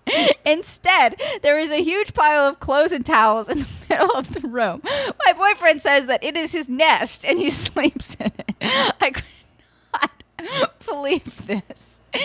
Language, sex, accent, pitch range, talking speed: English, female, American, 235-350 Hz, 165 wpm